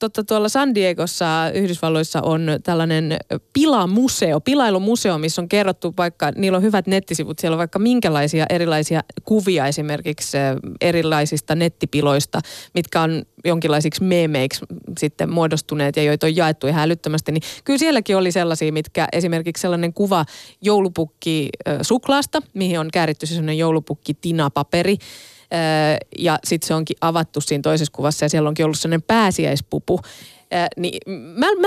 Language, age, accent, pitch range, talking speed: Finnish, 20-39, native, 155-195 Hz, 135 wpm